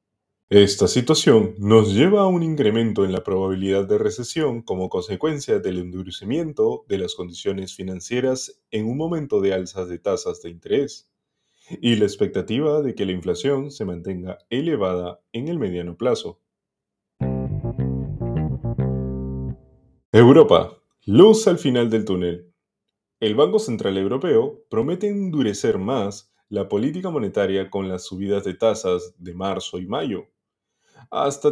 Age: 30-49